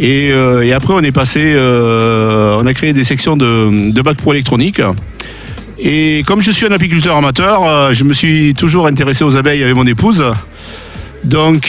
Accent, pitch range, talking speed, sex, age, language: French, 125-160 Hz, 180 wpm, male, 50-69, French